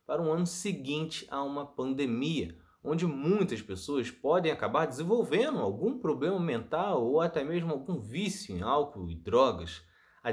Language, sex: Portuguese, male